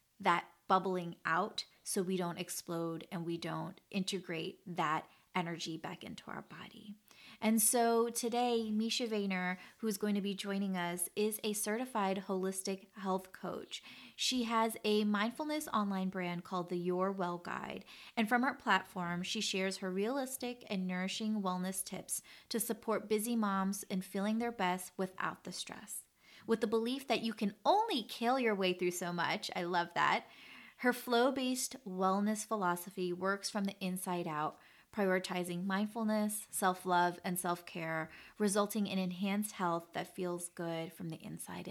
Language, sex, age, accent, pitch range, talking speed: English, female, 30-49, American, 175-215 Hz, 155 wpm